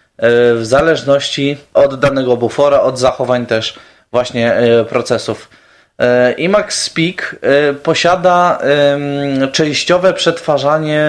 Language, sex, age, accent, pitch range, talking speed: Polish, male, 20-39, native, 135-170 Hz, 80 wpm